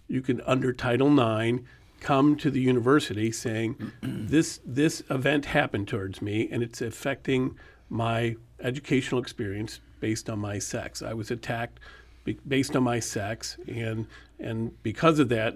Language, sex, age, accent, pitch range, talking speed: English, male, 50-69, American, 110-135 Hz, 145 wpm